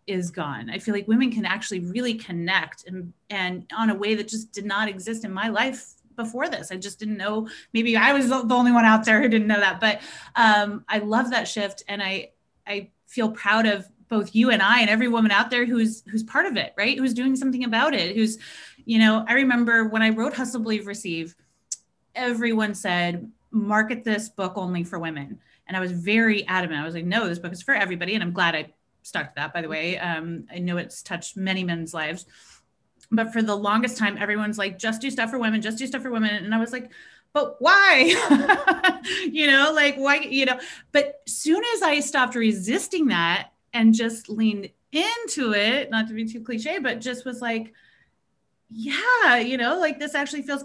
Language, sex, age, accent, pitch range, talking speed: English, female, 30-49, American, 200-250 Hz, 215 wpm